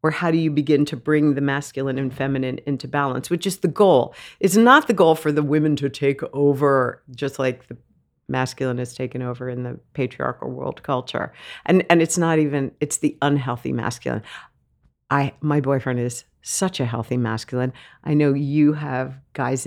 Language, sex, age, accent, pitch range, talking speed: English, female, 50-69, American, 135-170 Hz, 185 wpm